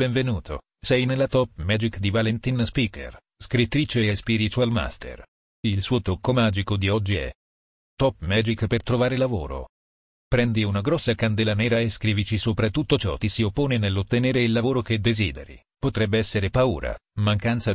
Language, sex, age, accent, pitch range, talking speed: Italian, male, 40-59, native, 100-120 Hz, 155 wpm